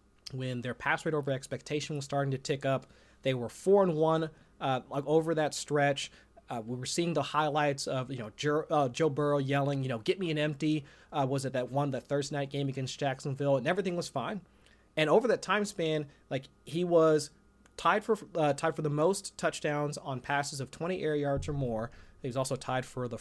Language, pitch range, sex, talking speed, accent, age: English, 135-160 Hz, male, 220 wpm, American, 30-49